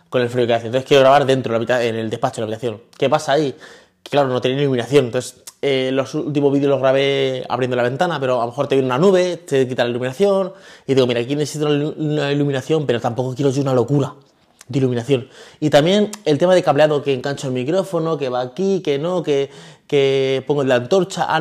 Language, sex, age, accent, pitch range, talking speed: Spanish, male, 20-39, Spanish, 130-170 Hz, 225 wpm